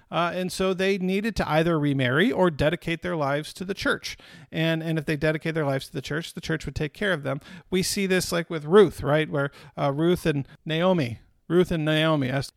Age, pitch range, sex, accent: 50-69, 140-175 Hz, male, American